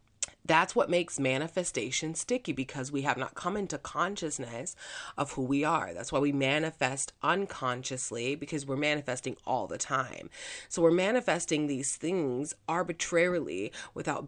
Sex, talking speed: female, 145 wpm